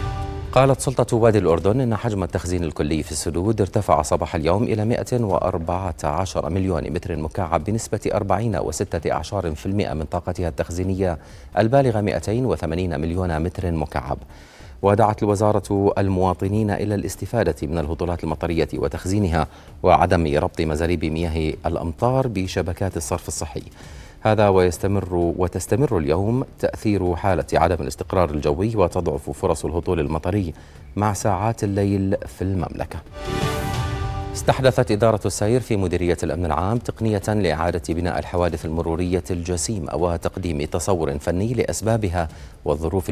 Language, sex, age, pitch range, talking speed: Arabic, male, 40-59, 85-100 Hz, 115 wpm